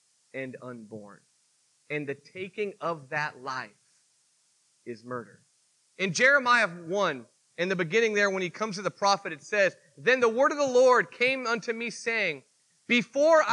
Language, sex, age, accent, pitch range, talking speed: English, male, 30-49, American, 185-245 Hz, 160 wpm